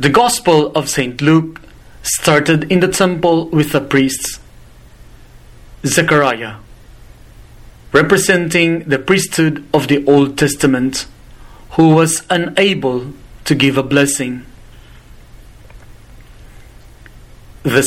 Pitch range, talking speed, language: 125-160 Hz, 95 wpm, English